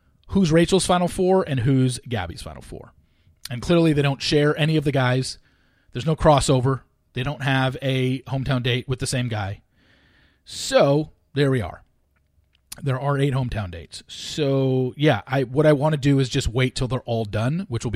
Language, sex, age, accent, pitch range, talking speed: English, male, 30-49, American, 105-140 Hz, 190 wpm